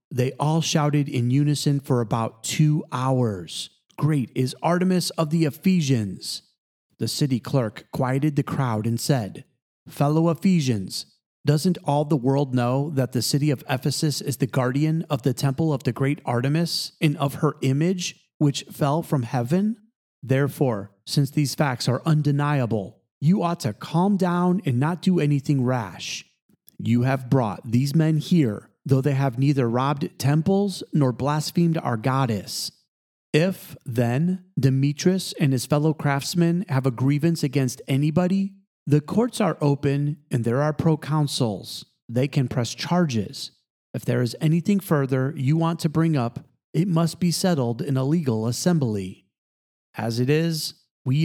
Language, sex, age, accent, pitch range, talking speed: English, male, 30-49, American, 130-160 Hz, 155 wpm